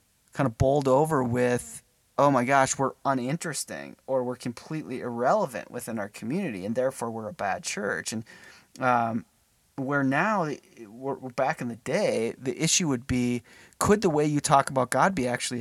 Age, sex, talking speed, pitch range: 30-49, male, 175 wpm, 120-140 Hz